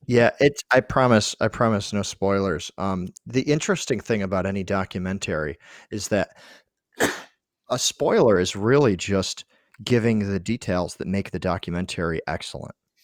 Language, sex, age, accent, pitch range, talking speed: English, male, 40-59, American, 95-115 Hz, 140 wpm